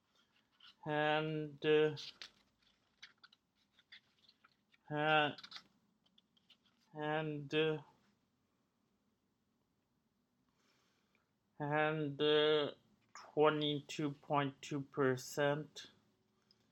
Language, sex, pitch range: English, male, 140-155 Hz